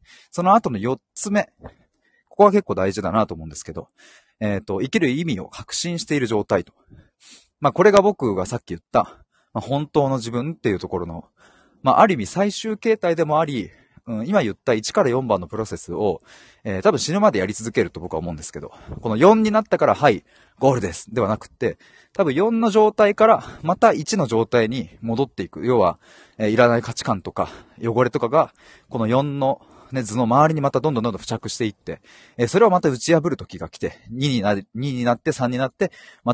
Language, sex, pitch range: Japanese, male, 105-165 Hz